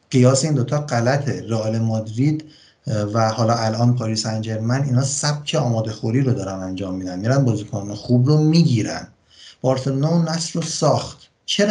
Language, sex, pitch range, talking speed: Persian, male, 115-140 Hz, 160 wpm